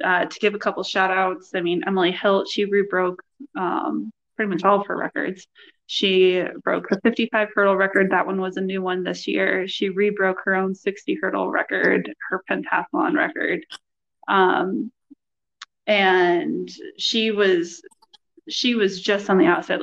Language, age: English, 20-39